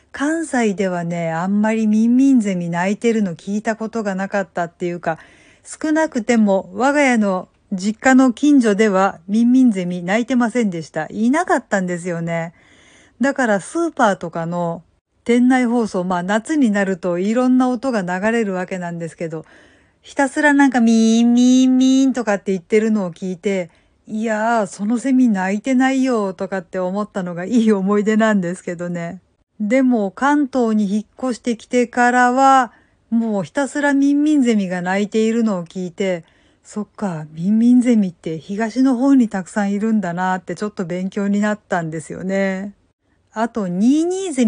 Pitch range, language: 190-250 Hz, Japanese